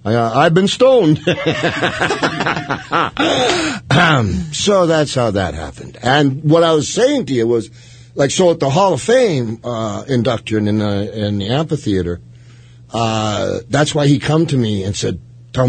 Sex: male